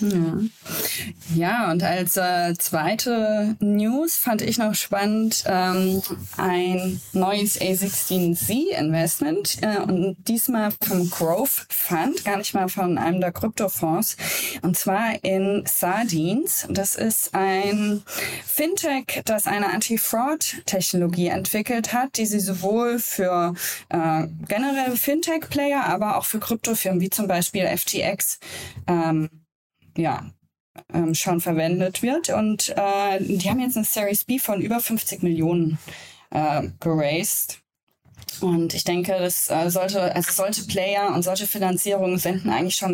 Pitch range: 175-215 Hz